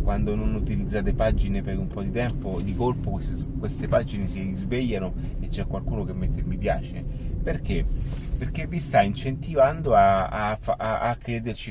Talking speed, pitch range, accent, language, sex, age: 170 wpm, 95-115 Hz, native, Italian, male, 30-49